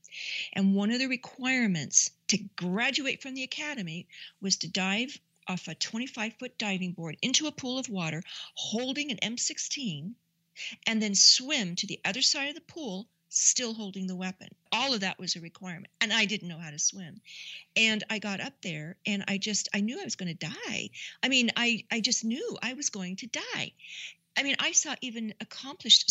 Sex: female